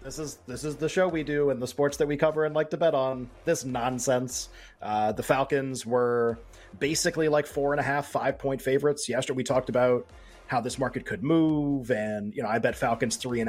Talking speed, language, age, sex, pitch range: 225 wpm, English, 30-49, male, 120-145 Hz